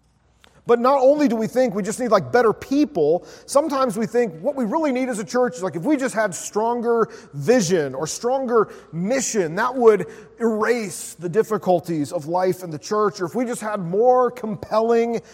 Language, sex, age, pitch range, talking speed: English, male, 30-49, 180-235 Hz, 195 wpm